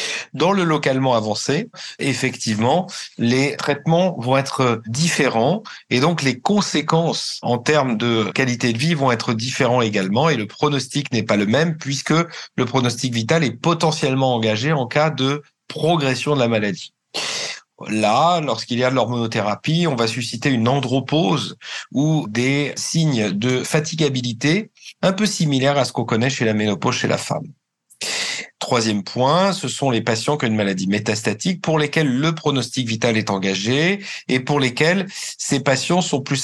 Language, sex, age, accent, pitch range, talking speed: French, male, 50-69, French, 115-155 Hz, 165 wpm